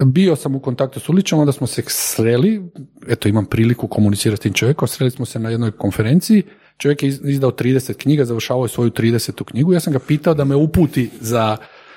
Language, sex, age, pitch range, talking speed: Croatian, male, 40-59, 120-170 Hz, 205 wpm